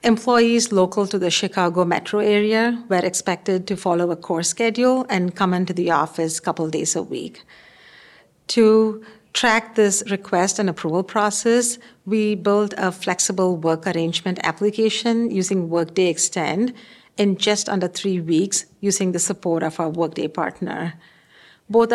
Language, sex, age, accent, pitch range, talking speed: English, female, 50-69, Indian, 170-210 Hz, 150 wpm